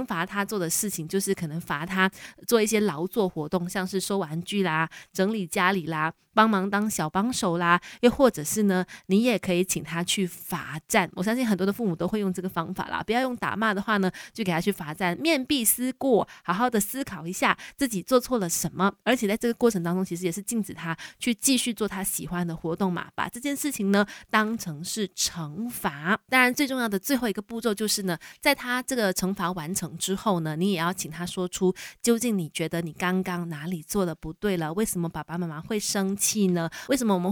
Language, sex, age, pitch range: Chinese, female, 20-39, 175-220 Hz